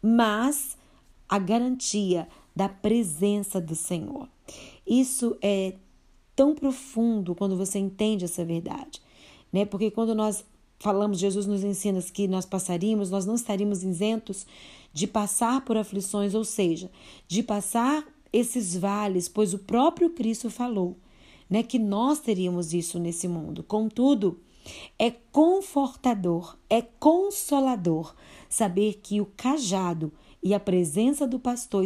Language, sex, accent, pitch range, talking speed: Portuguese, female, Brazilian, 185-240 Hz, 125 wpm